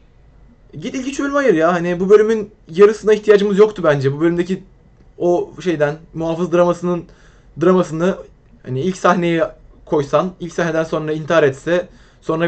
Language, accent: Turkish, native